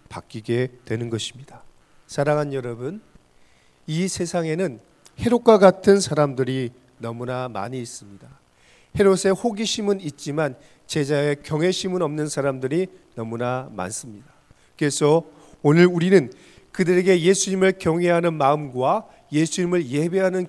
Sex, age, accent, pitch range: male, 40-59, native, 130-175 Hz